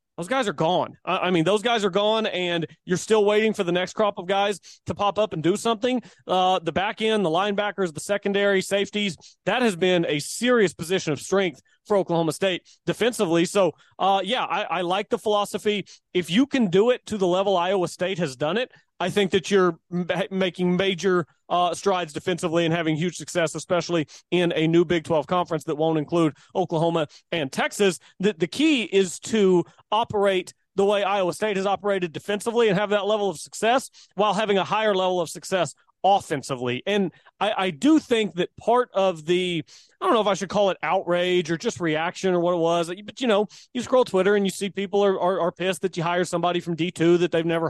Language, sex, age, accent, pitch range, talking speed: English, male, 30-49, American, 170-205 Hz, 215 wpm